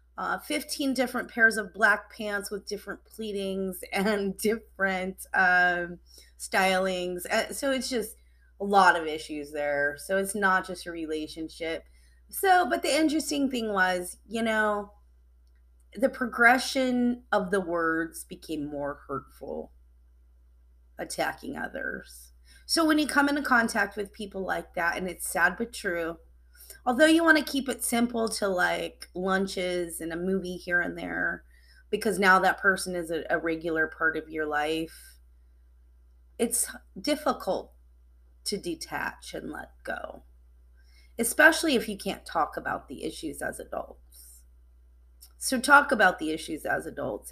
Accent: American